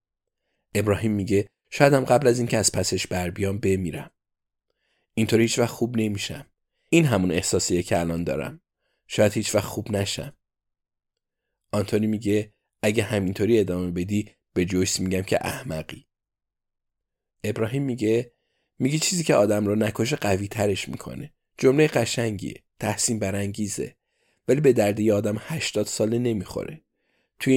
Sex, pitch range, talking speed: male, 100-115 Hz, 130 wpm